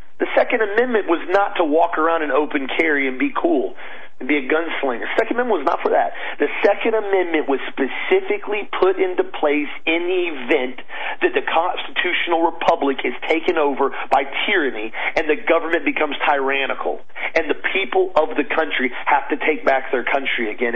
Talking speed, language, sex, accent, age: 180 wpm, English, male, American, 40-59